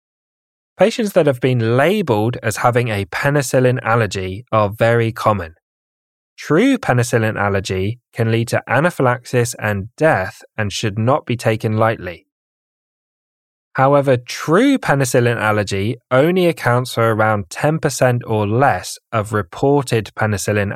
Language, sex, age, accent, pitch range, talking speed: English, male, 20-39, British, 105-130 Hz, 120 wpm